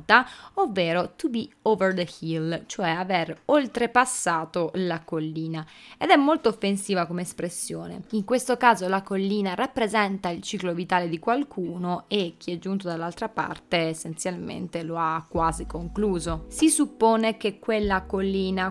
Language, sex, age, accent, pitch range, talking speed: Italian, female, 20-39, native, 170-195 Hz, 140 wpm